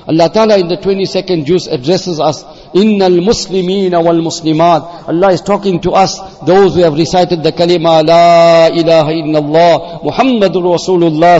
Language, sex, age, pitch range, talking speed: English, male, 50-69, 170-225 Hz, 135 wpm